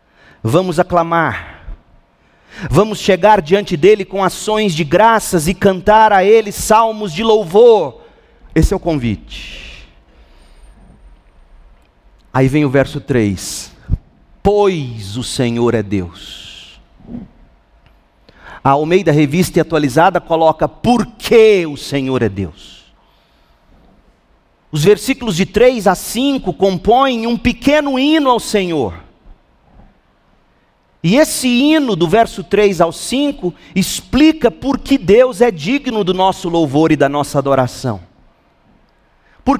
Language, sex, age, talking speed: Portuguese, male, 40-59, 115 wpm